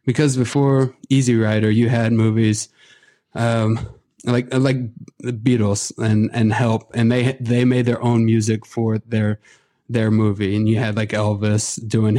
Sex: male